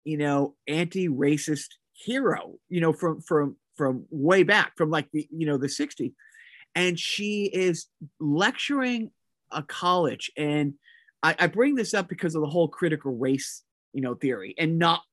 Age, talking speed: 30-49, 165 wpm